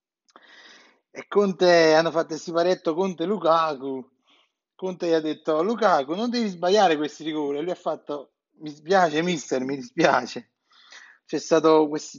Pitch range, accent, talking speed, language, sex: 155-210 Hz, native, 145 wpm, Italian, male